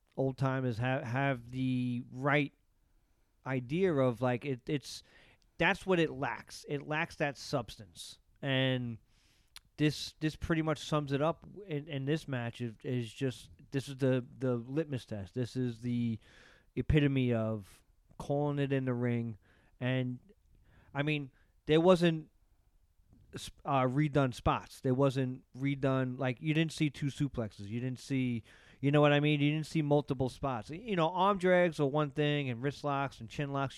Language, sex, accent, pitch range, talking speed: English, male, American, 120-150 Hz, 165 wpm